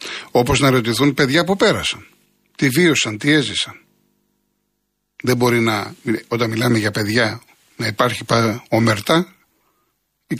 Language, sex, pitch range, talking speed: Greek, male, 105-150 Hz, 120 wpm